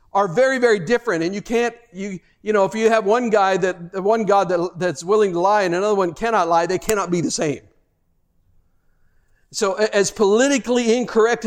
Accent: American